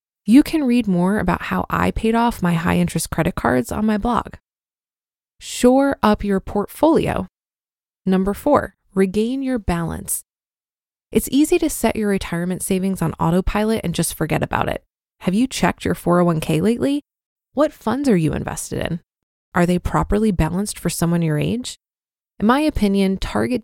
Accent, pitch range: American, 180-235 Hz